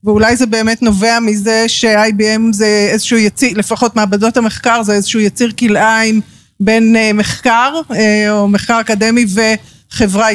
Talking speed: 130 wpm